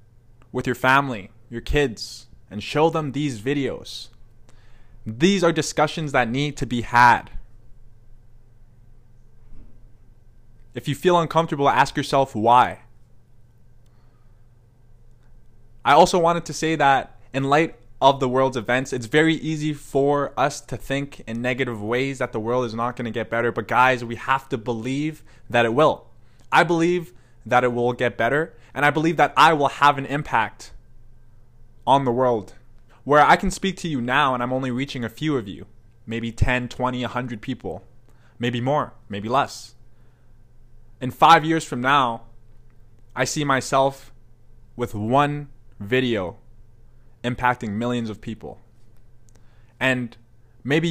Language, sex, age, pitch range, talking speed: English, male, 20-39, 115-135 Hz, 145 wpm